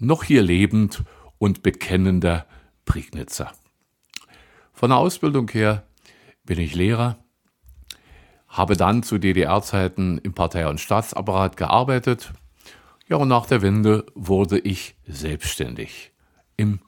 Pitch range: 85-105 Hz